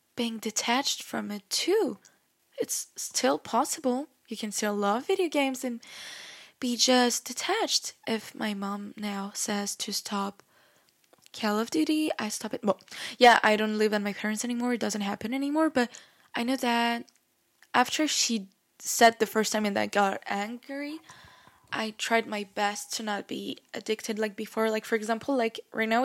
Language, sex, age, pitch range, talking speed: French, female, 10-29, 215-265 Hz, 170 wpm